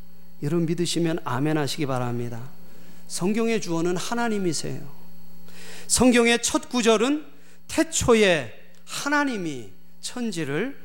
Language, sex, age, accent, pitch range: Korean, male, 40-59, native, 150-200 Hz